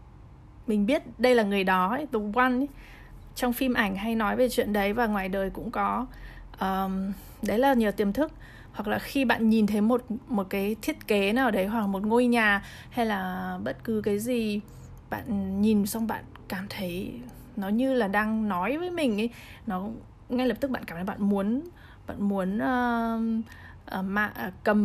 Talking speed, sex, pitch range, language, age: 190 wpm, female, 200-245 Hz, Vietnamese, 20-39